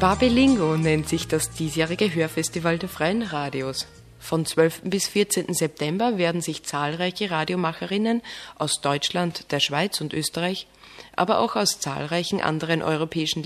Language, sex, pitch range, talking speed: German, female, 155-210 Hz, 135 wpm